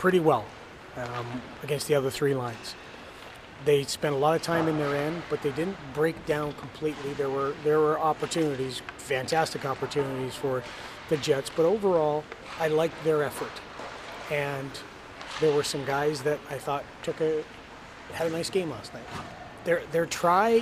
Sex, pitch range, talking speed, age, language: male, 135-160 Hz, 170 wpm, 30-49, English